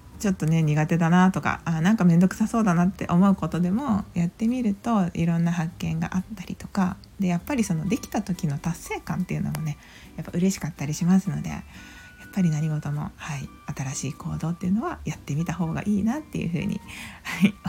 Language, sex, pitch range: Japanese, female, 155-195 Hz